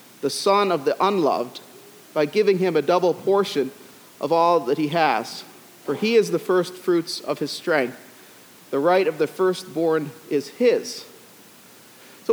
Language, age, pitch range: English, 40-59, 165-220 Hz